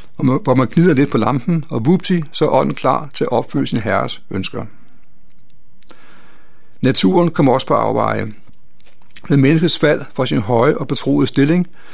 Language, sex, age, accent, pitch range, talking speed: Danish, male, 60-79, native, 120-155 Hz, 155 wpm